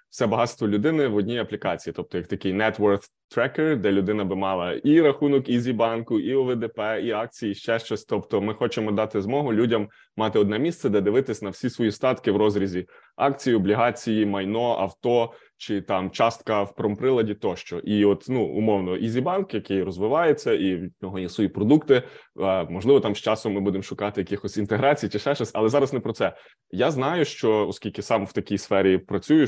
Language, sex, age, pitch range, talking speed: Ukrainian, male, 20-39, 100-120 Hz, 190 wpm